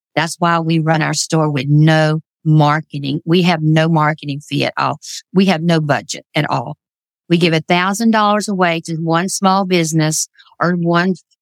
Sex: female